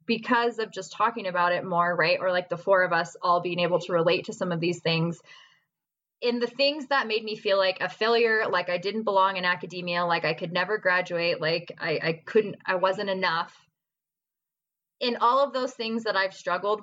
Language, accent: English, American